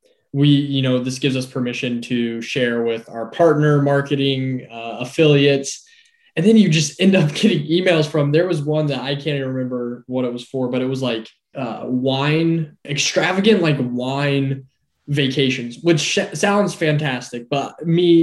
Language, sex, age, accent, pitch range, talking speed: English, male, 10-29, American, 125-155 Hz, 170 wpm